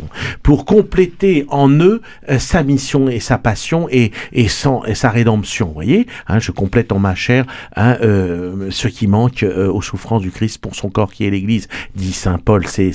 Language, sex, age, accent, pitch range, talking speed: French, male, 50-69, French, 100-140 Hz, 200 wpm